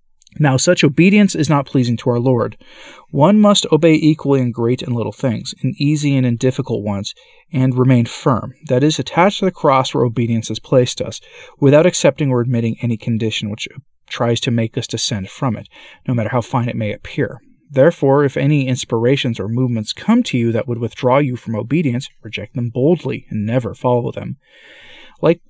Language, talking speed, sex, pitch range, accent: English, 195 wpm, male, 115-150 Hz, American